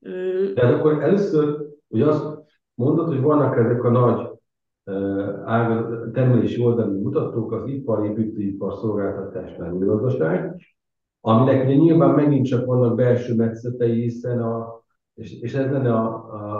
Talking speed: 120 wpm